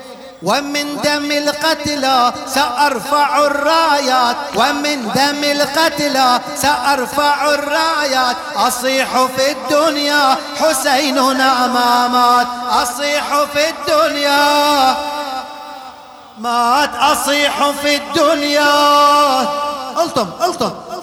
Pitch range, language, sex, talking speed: 260-290 Hz, Arabic, male, 70 wpm